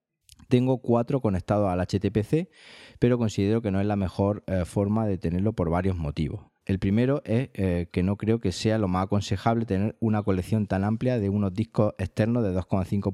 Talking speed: 190 wpm